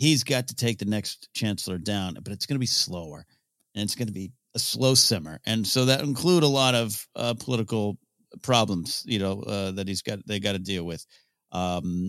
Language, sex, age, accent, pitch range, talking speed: English, male, 40-59, American, 95-125 Hz, 220 wpm